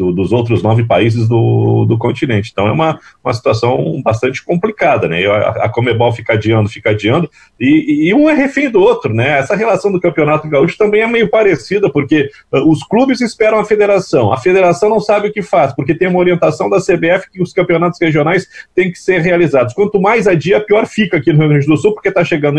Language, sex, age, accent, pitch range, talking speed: Portuguese, male, 40-59, Brazilian, 115-180 Hz, 215 wpm